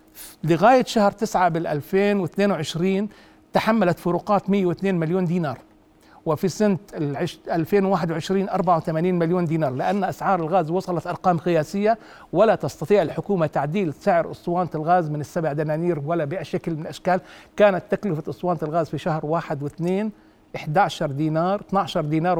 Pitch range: 165-215 Hz